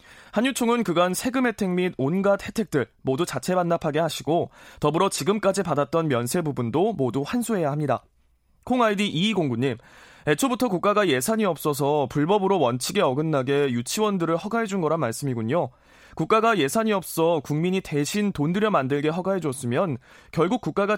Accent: native